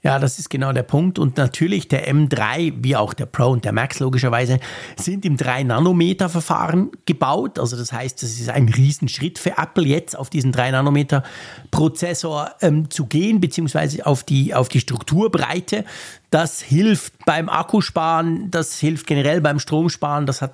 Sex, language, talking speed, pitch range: male, German, 160 wpm, 130-175 Hz